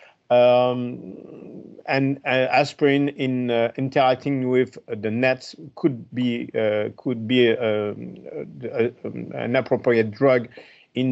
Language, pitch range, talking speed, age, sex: English, 115-140 Hz, 130 wpm, 50-69, male